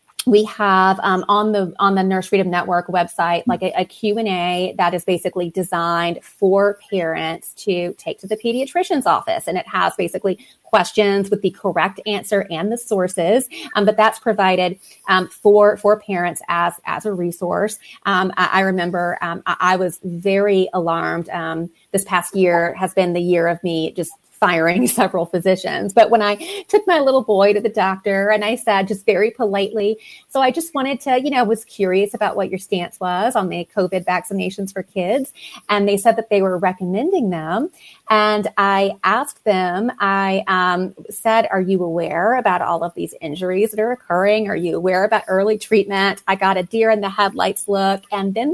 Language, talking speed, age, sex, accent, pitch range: English, 190 wpm, 30-49, female, American, 180-215 Hz